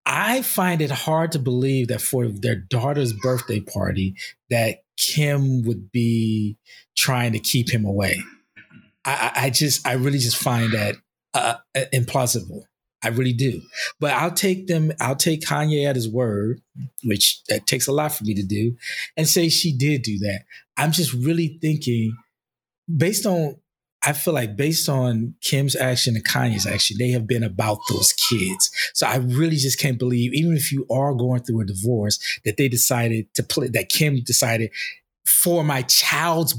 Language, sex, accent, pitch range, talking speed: English, male, American, 115-155 Hz, 175 wpm